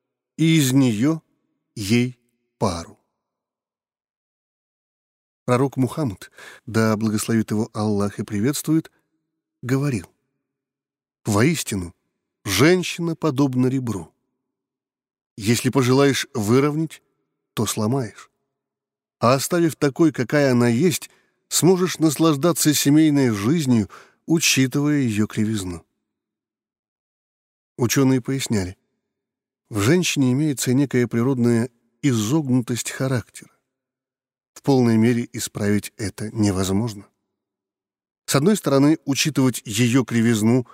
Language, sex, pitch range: Russian, male, 110-145 Hz